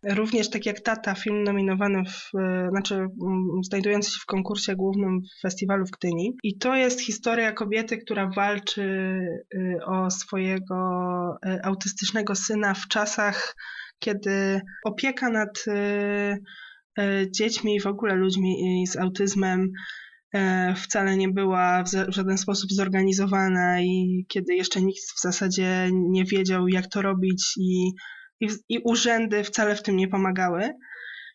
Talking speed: 125 wpm